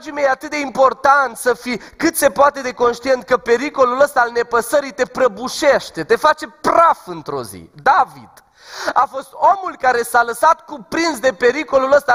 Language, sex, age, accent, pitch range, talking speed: Romanian, male, 30-49, native, 230-310 Hz, 175 wpm